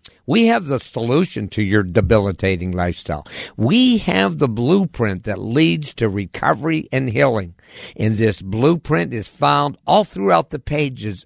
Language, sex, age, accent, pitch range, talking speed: English, male, 60-79, American, 95-135 Hz, 145 wpm